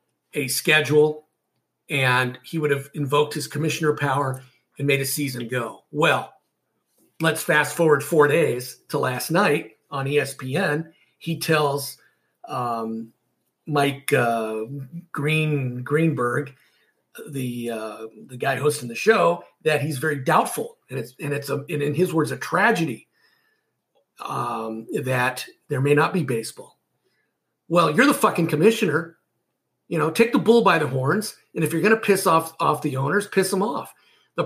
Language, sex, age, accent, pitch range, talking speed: English, male, 50-69, American, 130-170 Hz, 155 wpm